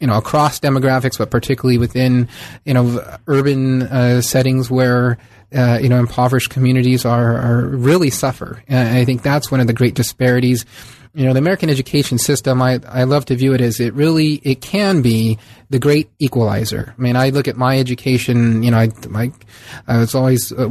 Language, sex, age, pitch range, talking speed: English, male, 30-49, 120-135 Hz, 195 wpm